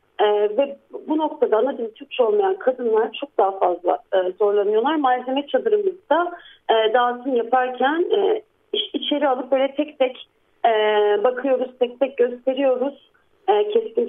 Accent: native